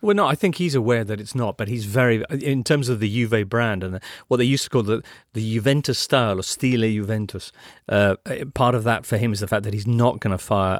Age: 40-59